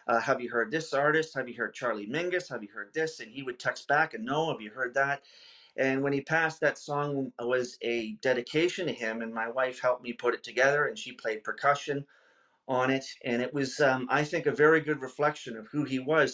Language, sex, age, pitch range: English, male, 40-59, 125-155 Hz